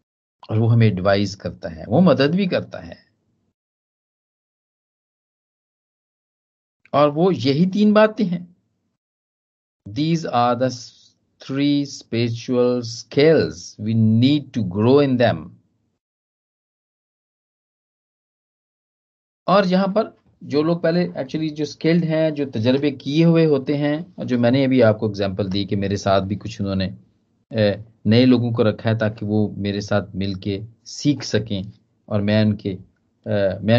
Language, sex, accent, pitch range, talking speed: Hindi, male, native, 105-150 Hz, 115 wpm